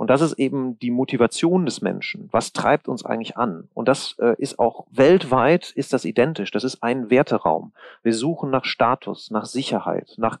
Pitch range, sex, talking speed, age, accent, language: 120-160 Hz, male, 185 wpm, 40-59, German, German